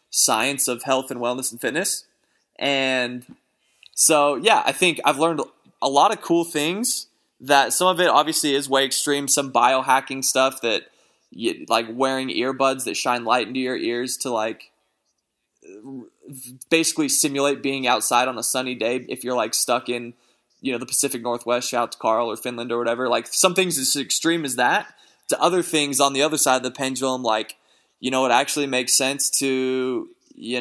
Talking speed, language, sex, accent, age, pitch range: 185 wpm, English, male, American, 20-39, 125-155 Hz